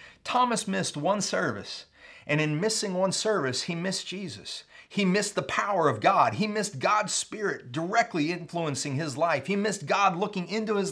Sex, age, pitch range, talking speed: male, 40-59, 150-205 Hz, 175 wpm